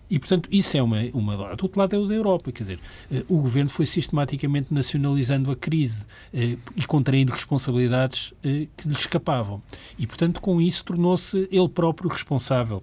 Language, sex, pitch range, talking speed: Portuguese, male, 105-160 Hz, 180 wpm